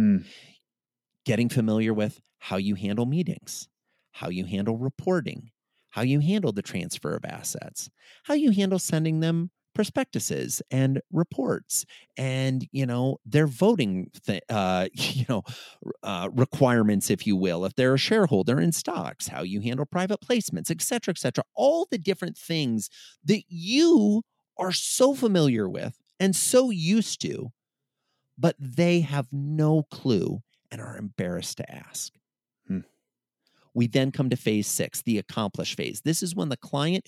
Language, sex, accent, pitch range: English, male, American, 115-175 Hz